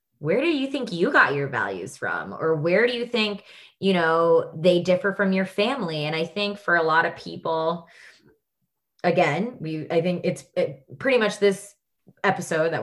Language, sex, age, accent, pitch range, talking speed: English, female, 20-39, American, 145-185 Hz, 185 wpm